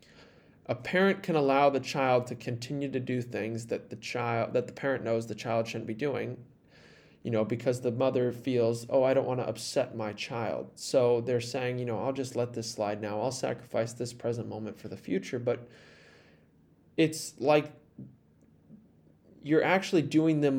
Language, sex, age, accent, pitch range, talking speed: English, male, 20-39, American, 120-155 Hz, 185 wpm